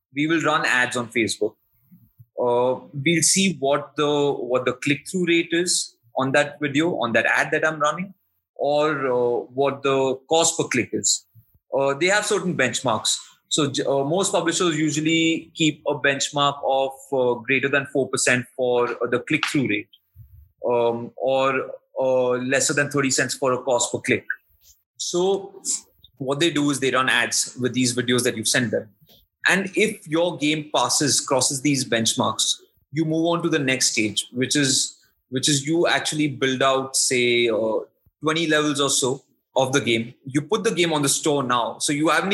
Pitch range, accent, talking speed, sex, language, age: 125-155 Hz, Indian, 175 wpm, male, English, 20-39